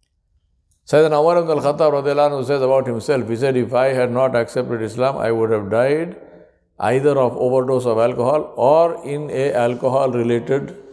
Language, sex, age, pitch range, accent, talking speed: English, male, 60-79, 115-145 Hz, Indian, 150 wpm